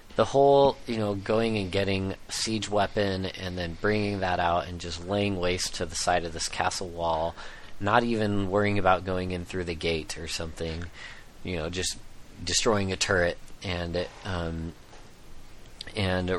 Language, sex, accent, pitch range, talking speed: English, male, American, 90-105 Hz, 165 wpm